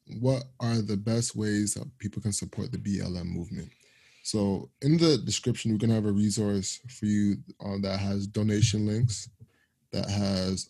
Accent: American